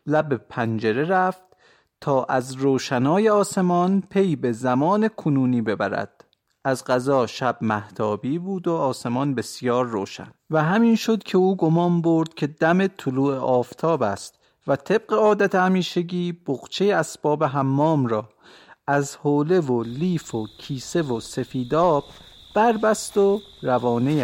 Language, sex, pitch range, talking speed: Persian, male, 125-180 Hz, 130 wpm